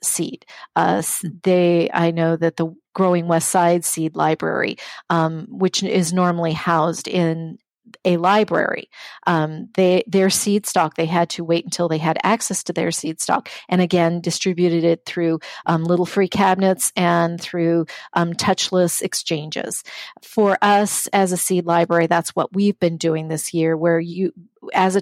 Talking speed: 165 wpm